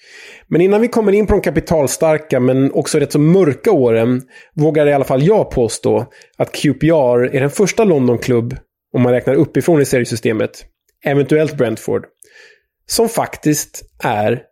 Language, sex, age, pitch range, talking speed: Swedish, male, 20-39, 125-160 Hz, 155 wpm